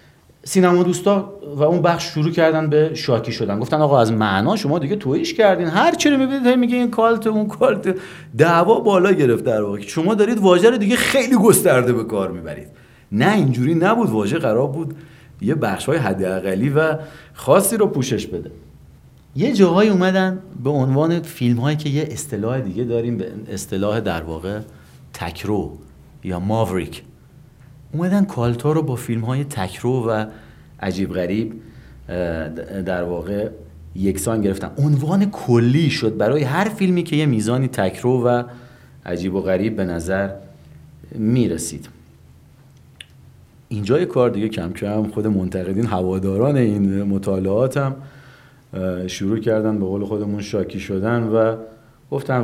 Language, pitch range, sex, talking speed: Persian, 95-155 Hz, male, 140 wpm